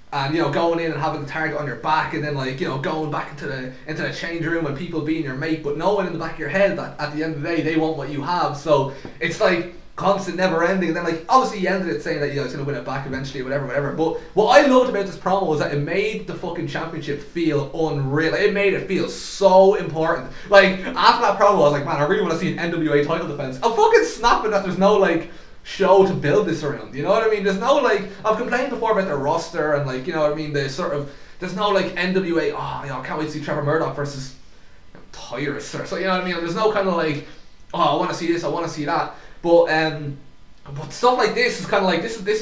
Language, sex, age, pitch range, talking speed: English, male, 20-39, 145-190 Hz, 285 wpm